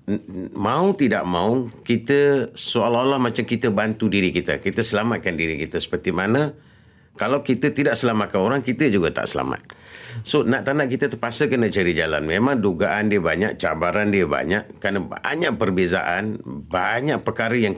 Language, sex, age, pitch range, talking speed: English, male, 50-69, 90-120 Hz, 160 wpm